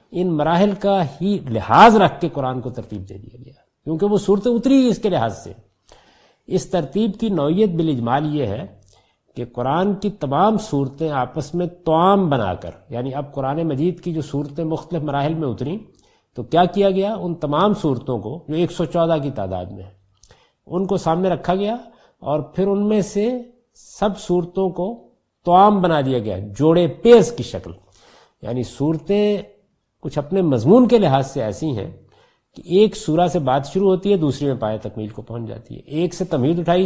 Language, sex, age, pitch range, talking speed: Urdu, male, 50-69, 125-190 Hz, 185 wpm